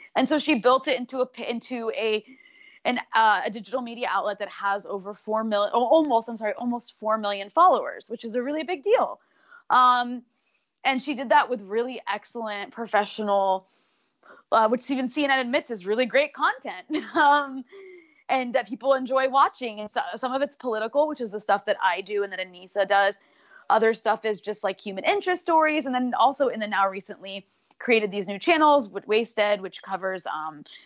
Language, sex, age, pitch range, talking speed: English, female, 20-39, 210-275 Hz, 195 wpm